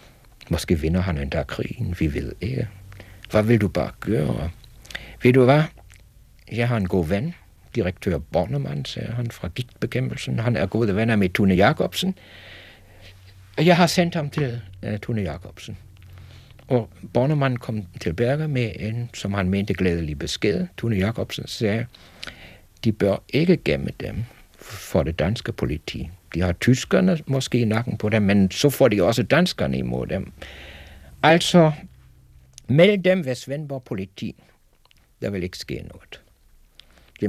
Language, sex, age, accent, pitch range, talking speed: Danish, male, 60-79, German, 90-125 Hz, 155 wpm